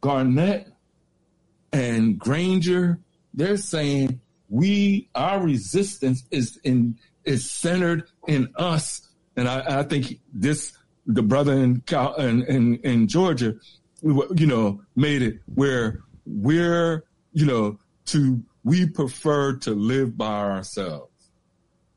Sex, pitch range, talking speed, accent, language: male, 140-195 Hz, 110 wpm, American, English